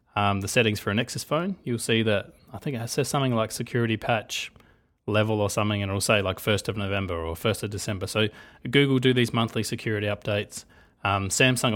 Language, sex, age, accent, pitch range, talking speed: English, male, 20-39, Australian, 105-125 Hz, 210 wpm